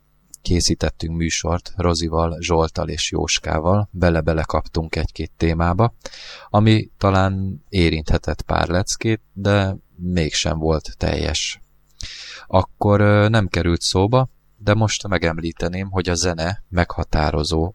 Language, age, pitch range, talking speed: Hungarian, 20-39, 80-105 Hz, 100 wpm